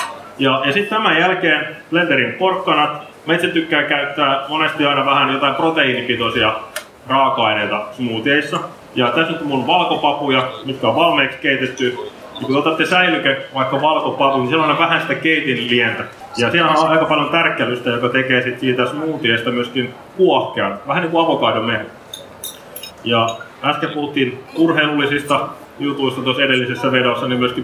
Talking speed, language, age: 140 wpm, Finnish, 30-49